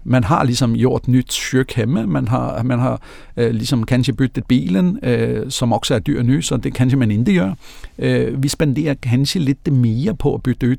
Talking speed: 195 wpm